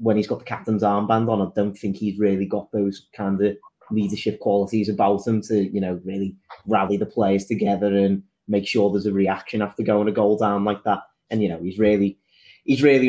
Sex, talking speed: male, 220 wpm